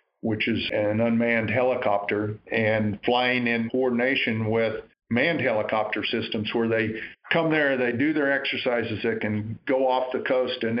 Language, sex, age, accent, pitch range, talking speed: English, male, 50-69, American, 110-130 Hz, 155 wpm